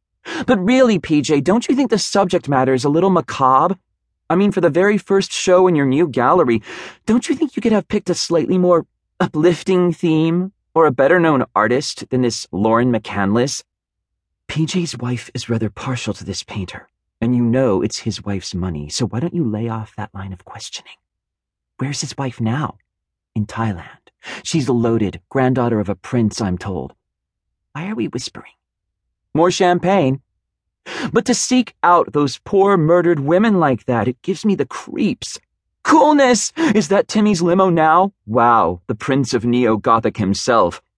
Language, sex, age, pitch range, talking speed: English, male, 40-59, 110-180 Hz, 175 wpm